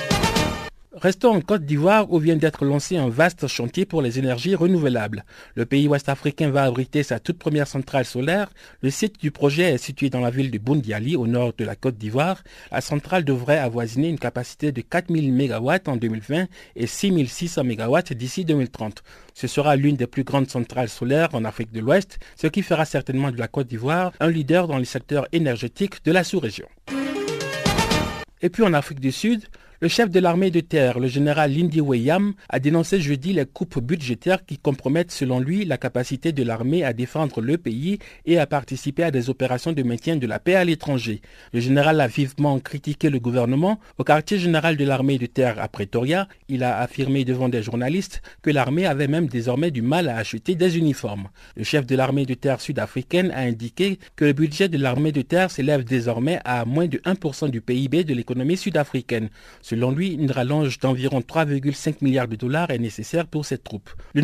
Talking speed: 195 wpm